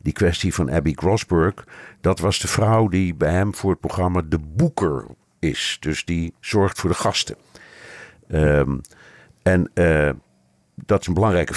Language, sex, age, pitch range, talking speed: Dutch, male, 50-69, 80-100 Hz, 155 wpm